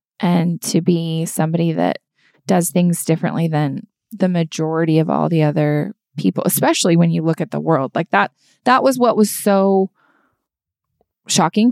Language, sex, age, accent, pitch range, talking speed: English, female, 20-39, American, 170-205 Hz, 160 wpm